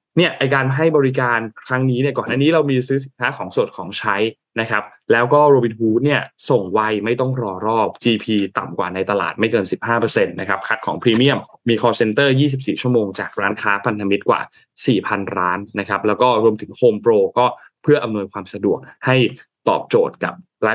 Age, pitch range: 20-39, 100-130 Hz